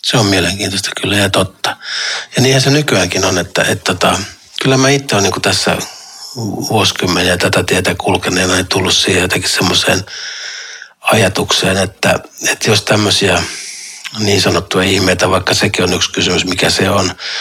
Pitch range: 95-110 Hz